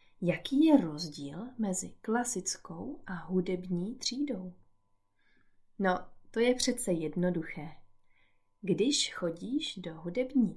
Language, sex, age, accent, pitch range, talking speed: Czech, female, 30-49, native, 165-235 Hz, 95 wpm